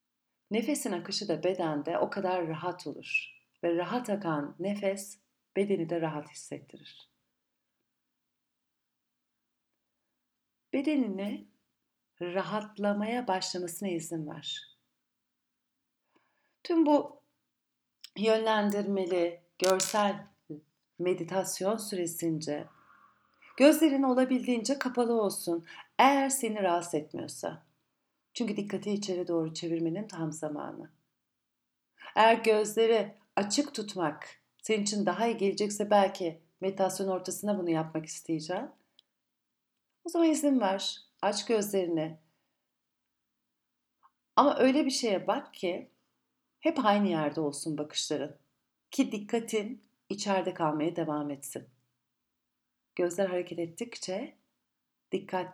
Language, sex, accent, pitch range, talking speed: Turkish, female, native, 170-220 Hz, 90 wpm